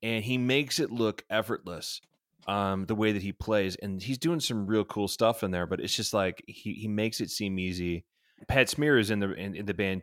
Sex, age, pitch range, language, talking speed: male, 30-49, 90-115 Hz, English, 240 wpm